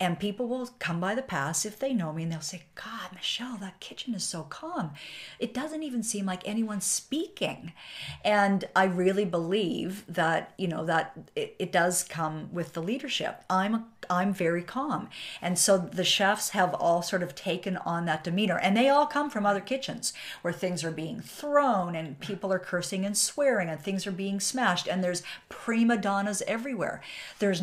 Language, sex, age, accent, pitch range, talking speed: English, female, 50-69, American, 170-210 Hz, 190 wpm